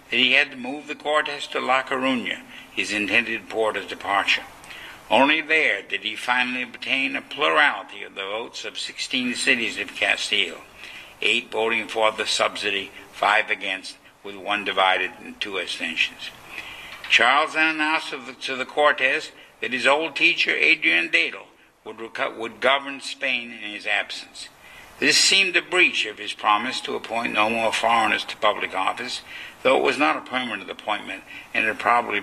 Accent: American